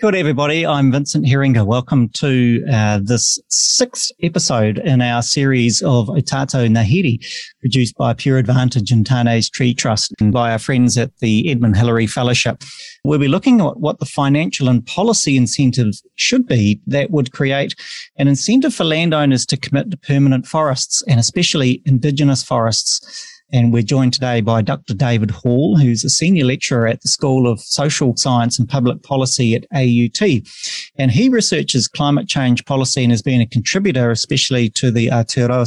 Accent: Australian